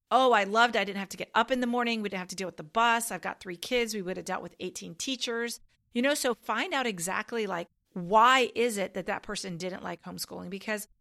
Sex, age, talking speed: female, 40-59, 260 wpm